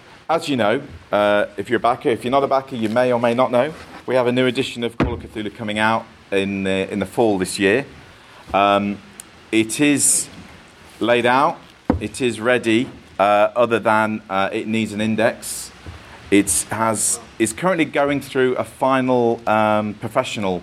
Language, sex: English, male